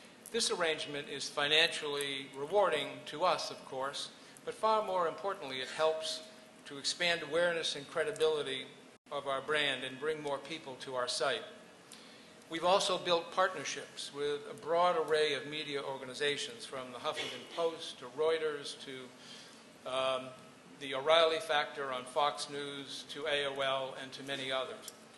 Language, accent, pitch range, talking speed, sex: English, American, 140-165 Hz, 145 wpm, male